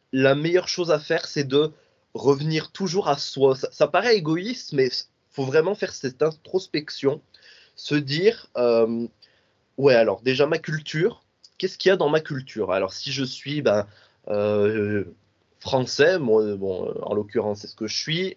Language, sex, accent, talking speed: French, male, French, 165 wpm